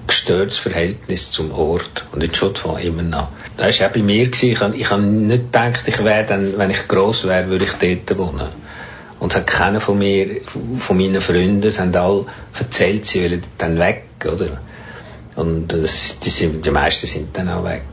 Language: German